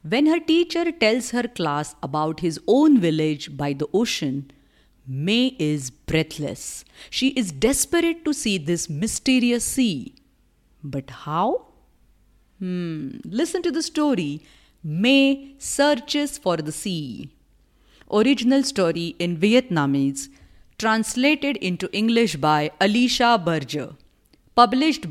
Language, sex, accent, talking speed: English, female, Indian, 110 wpm